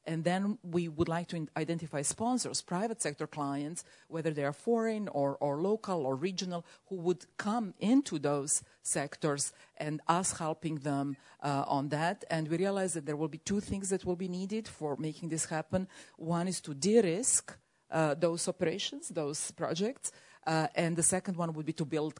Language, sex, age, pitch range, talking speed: English, female, 40-59, 150-185 Hz, 180 wpm